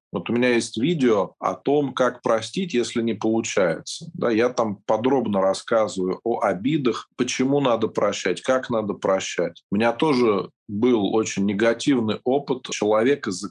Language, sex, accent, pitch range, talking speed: Russian, male, native, 100-130 Hz, 150 wpm